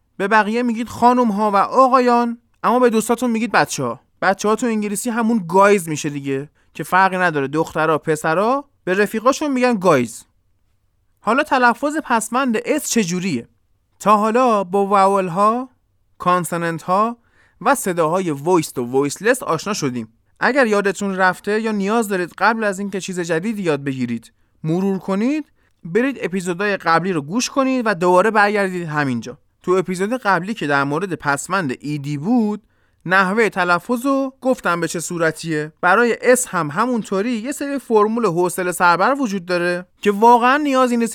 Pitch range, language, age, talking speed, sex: 165-230 Hz, Persian, 20-39, 145 wpm, male